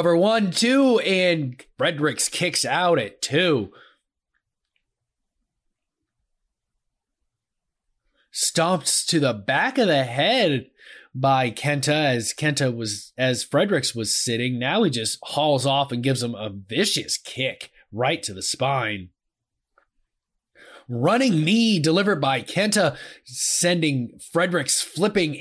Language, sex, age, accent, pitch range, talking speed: English, male, 30-49, American, 130-175 Hz, 115 wpm